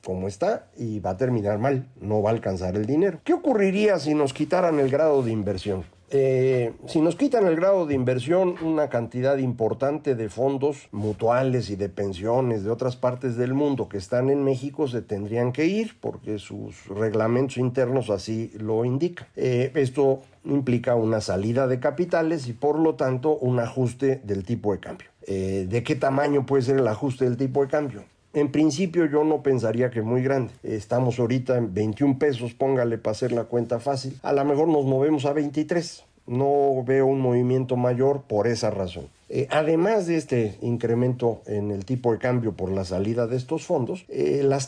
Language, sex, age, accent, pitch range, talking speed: Spanish, male, 50-69, Mexican, 115-145 Hz, 190 wpm